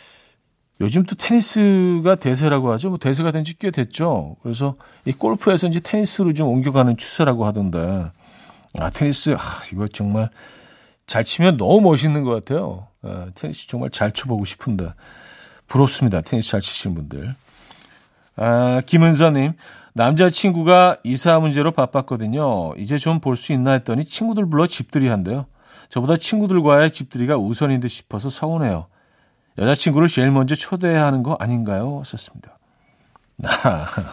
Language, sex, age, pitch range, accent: Korean, male, 50-69, 110-165 Hz, native